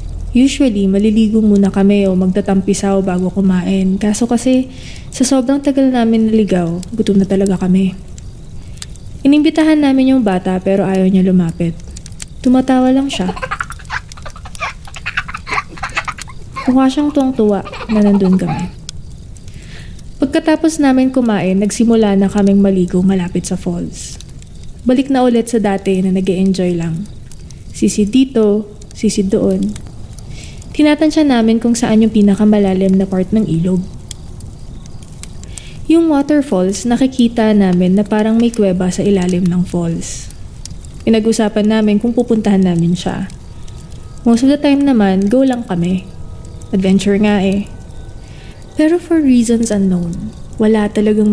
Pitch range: 185-235 Hz